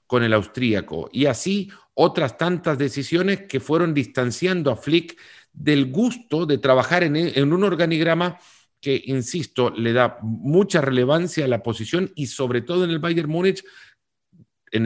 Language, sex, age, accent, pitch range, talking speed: Spanish, male, 50-69, Mexican, 115-165 Hz, 155 wpm